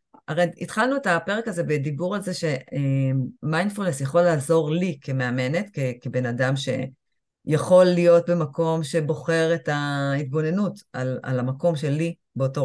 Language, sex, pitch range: Hebrew, female, 145-185 Hz